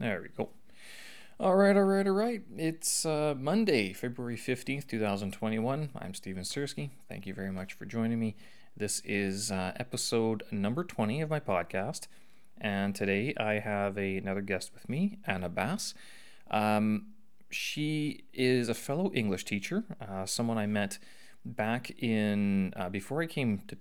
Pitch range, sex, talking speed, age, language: 100-125 Hz, male, 160 wpm, 30-49, English